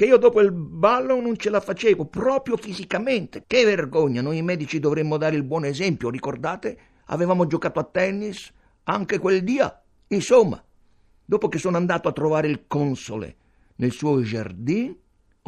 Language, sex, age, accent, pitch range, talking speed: Italian, male, 60-79, native, 135-200 Hz, 155 wpm